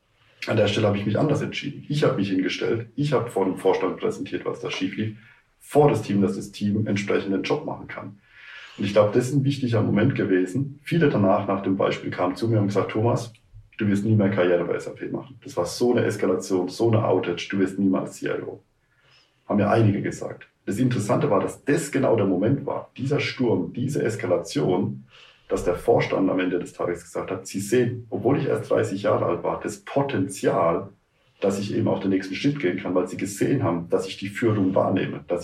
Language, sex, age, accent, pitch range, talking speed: German, male, 40-59, German, 95-120 Hz, 220 wpm